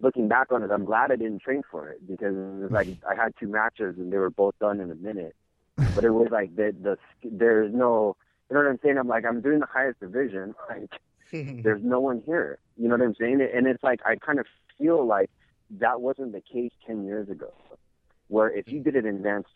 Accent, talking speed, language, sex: American, 240 wpm, English, male